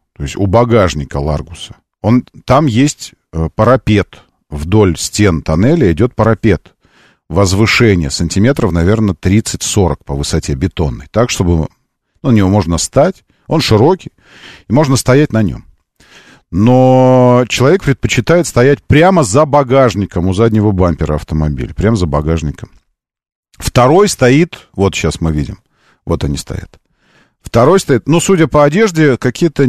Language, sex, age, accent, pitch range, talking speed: Russian, male, 40-59, native, 90-135 Hz, 130 wpm